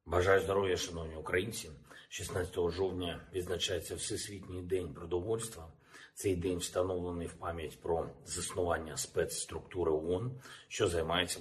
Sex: male